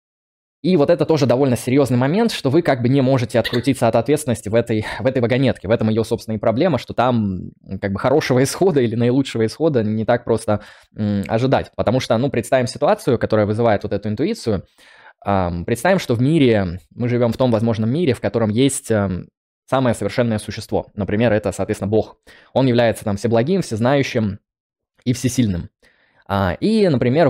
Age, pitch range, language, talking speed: 20-39, 105-130 Hz, Russian, 170 wpm